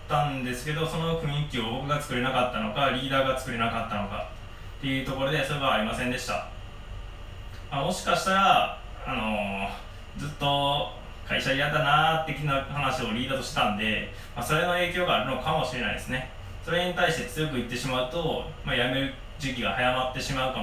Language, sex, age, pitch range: Japanese, male, 20-39, 105-160 Hz